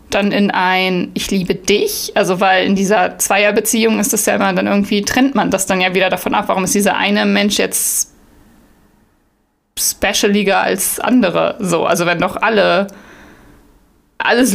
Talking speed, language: 165 wpm, German